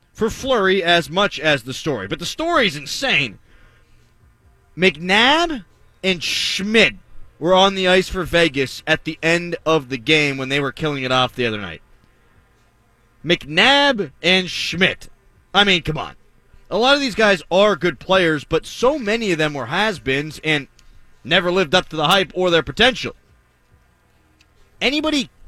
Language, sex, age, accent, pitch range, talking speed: English, male, 30-49, American, 135-190 Hz, 160 wpm